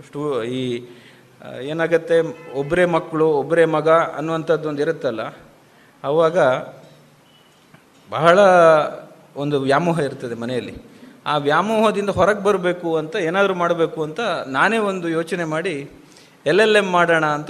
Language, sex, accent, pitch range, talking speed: Kannada, male, native, 140-175 Hz, 115 wpm